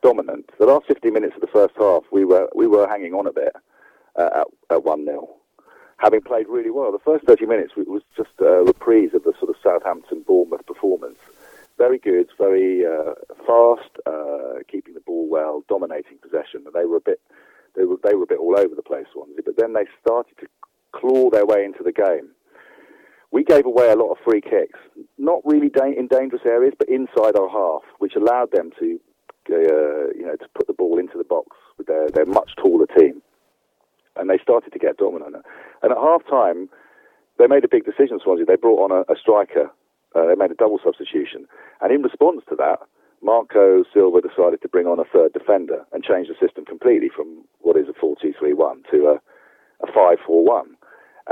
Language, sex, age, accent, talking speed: English, male, 40-59, British, 200 wpm